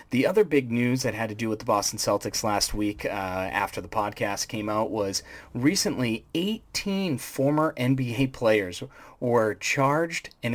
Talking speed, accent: 165 wpm, American